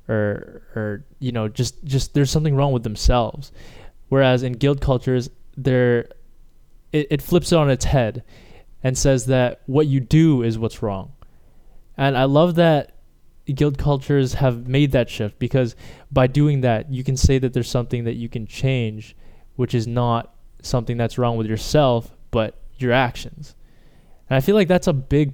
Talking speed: 175 wpm